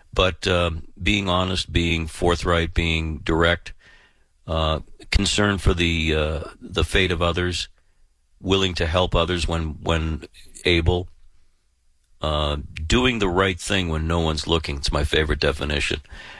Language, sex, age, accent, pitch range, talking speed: English, male, 50-69, American, 75-90 Hz, 135 wpm